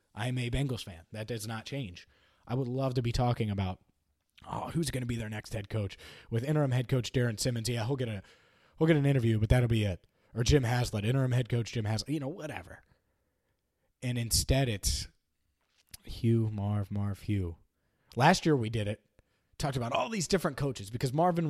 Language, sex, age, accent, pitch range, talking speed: English, male, 30-49, American, 105-140 Hz, 205 wpm